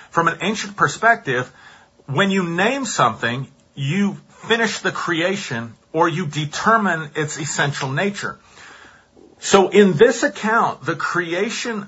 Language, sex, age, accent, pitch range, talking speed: English, male, 40-59, American, 135-190 Hz, 120 wpm